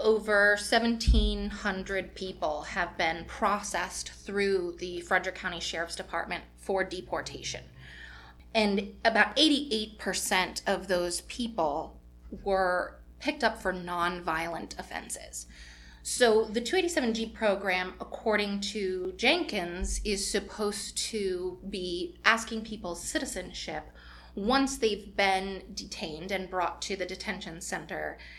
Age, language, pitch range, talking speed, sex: 20-39, English, 175-215 Hz, 105 wpm, female